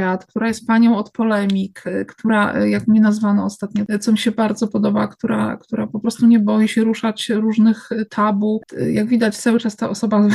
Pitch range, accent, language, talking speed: 215-255 Hz, native, Polish, 180 wpm